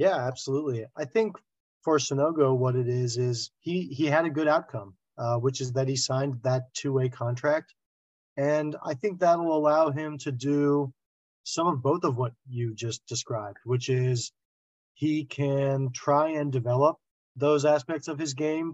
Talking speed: 170 wpm